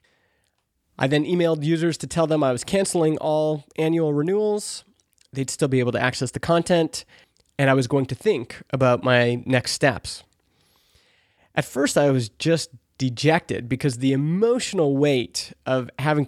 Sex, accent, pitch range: male, American, 130-160 Hz